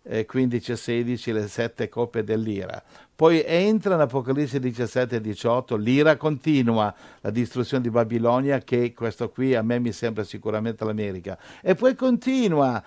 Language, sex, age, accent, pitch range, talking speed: Italian, male, 60-79, native, 110-160 Hz, 145 wpm